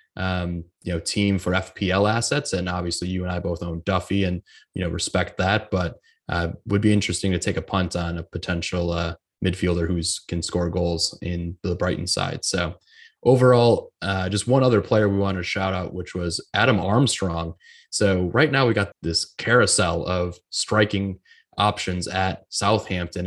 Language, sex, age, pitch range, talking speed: English, male, 20-39, 90-105 Hz, 185 wpm